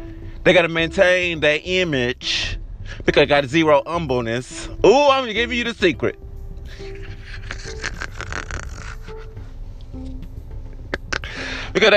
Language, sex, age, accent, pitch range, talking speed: English, male, 30-49, American, 100-165 Hz, 90 wpm